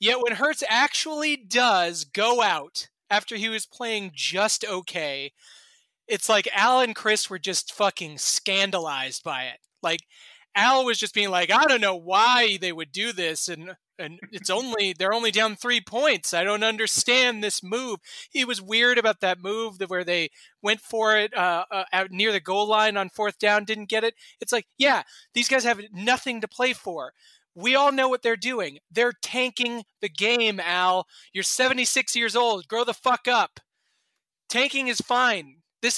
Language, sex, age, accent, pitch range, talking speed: English, male, 30-49, American, 180-245 Hz, 180 wpm